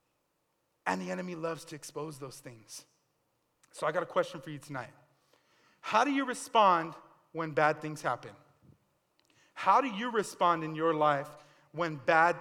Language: English